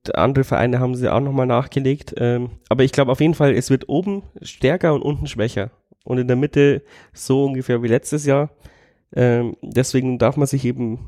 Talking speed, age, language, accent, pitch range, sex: 195 wpm, 30-49, German, German, 120-135 Hz, male